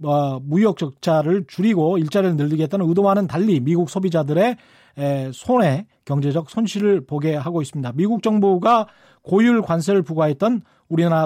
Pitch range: 155-210 Hz